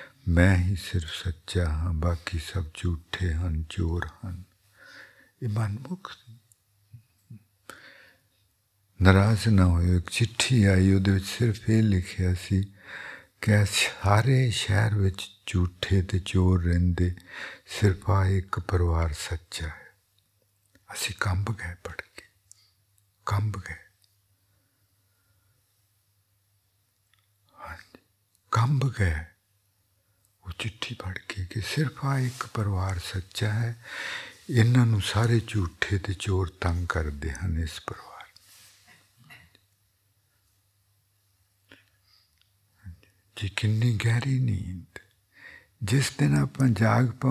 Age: 60-79